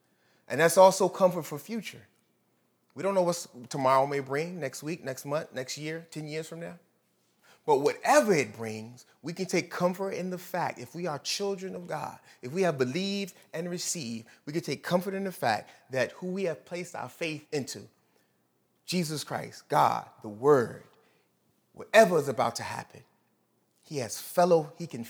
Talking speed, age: 180 wpm, 30-49